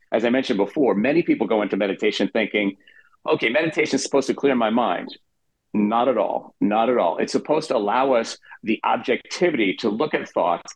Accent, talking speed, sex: American, 195 wpm, male